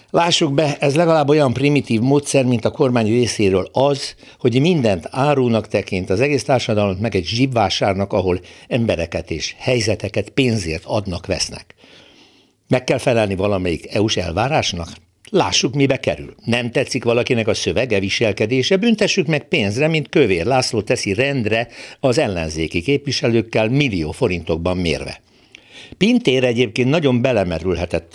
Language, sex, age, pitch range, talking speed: Hungarian, male, 60-79, 100-140 Hz, 130 wpm